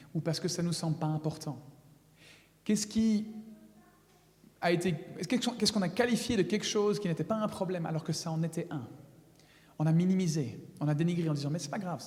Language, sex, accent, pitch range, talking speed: French, male, French, 155-200 Hz, 215 wpm